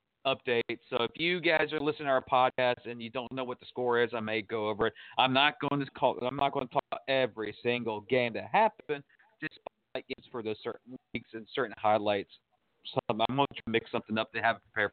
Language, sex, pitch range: English, male, 115-160 Hz